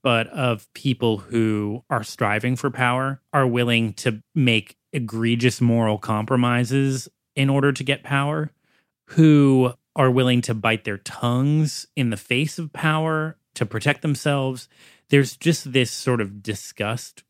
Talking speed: 140 wpm